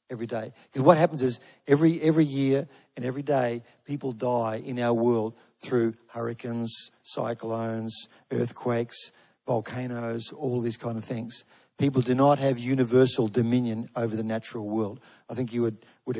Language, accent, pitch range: English, Australian, 115-135 Hz